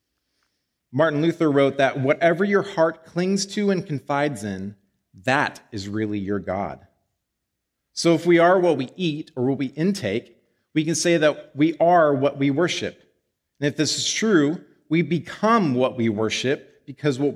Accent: American